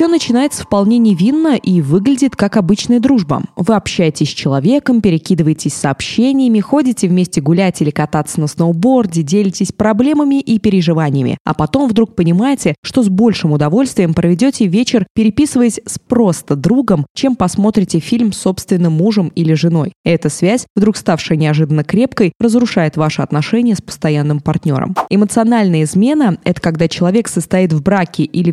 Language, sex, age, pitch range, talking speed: Russian, female, 20-39, 165-225 Hz, 145 wpm